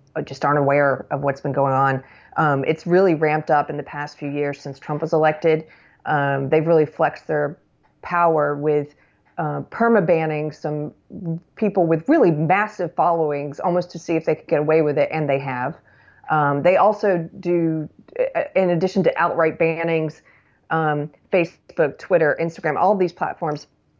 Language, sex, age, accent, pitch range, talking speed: English, female, 30-49, American, 150-180 Hz, 170 wpm